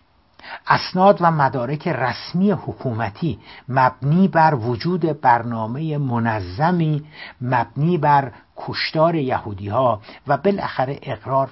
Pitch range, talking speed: 105-145 Hz, 95 wpm